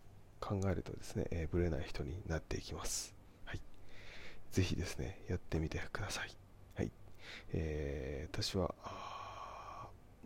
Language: Japanese